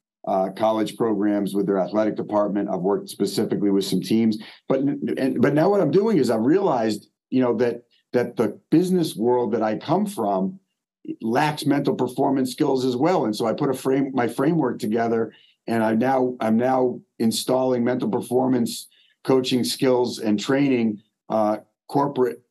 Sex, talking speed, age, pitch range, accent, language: male, 170 wpm, 50-69, 110-130 Hz, American, English